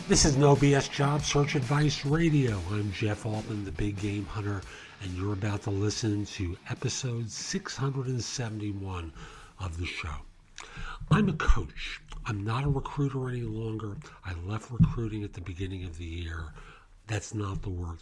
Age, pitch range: 50-69, 95-135 Hz